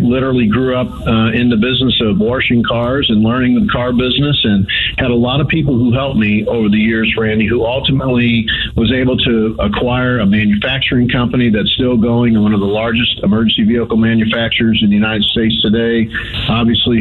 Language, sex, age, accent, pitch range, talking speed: English, male, 50-69, American, 110-130 Hz, 190 wpm